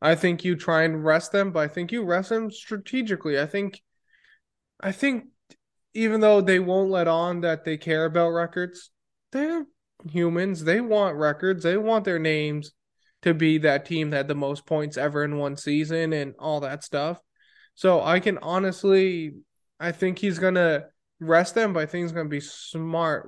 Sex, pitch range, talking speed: male, 155-185 Hz, 190 wpm